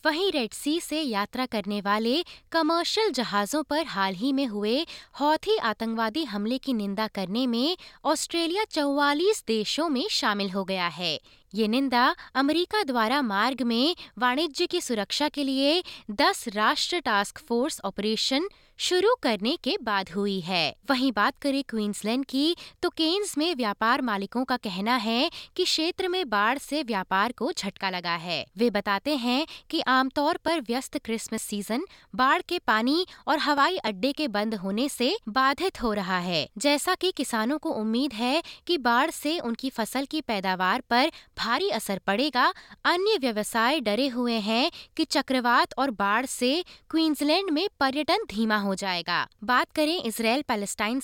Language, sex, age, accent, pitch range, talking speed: Hindi, female, 20-39, native, 220-310 Hz, 160 wpm